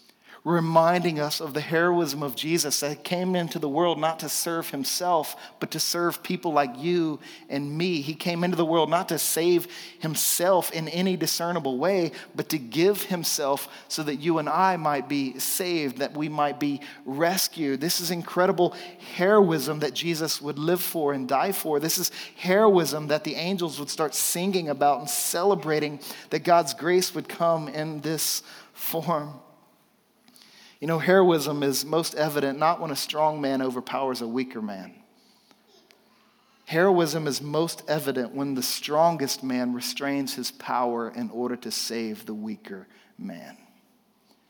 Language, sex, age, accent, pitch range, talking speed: English, male, 40-59, American, 145-180 Hz, 160 wpm